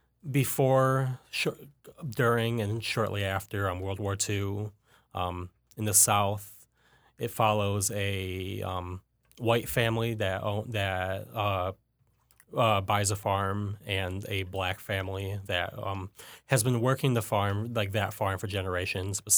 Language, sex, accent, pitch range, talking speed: English, male, American, 95-115 Hz, 140 wpm